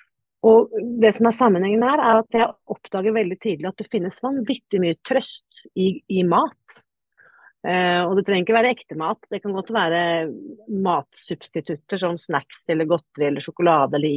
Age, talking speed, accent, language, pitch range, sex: 40-59, 175 wpm, native, Swedish, 160-235 Hz, female